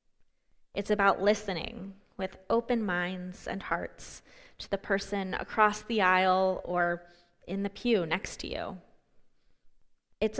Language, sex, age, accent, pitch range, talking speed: English, female, 20-39, American, 180-230 Hz, 125 wpm